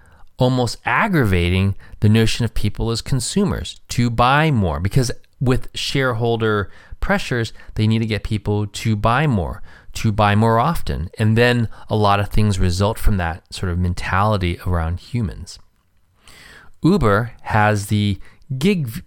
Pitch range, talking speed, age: 95-120 Hz, 140 wpm, 30-49